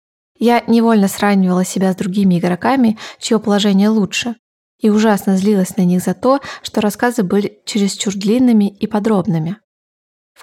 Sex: female